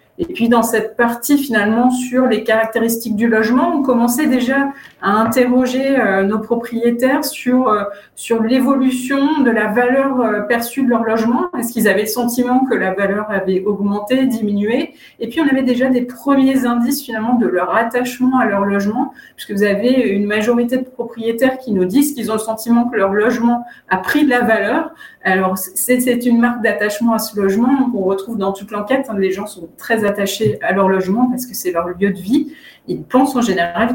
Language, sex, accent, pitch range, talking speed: French, female, French, 200-250 Hz, 195 wpm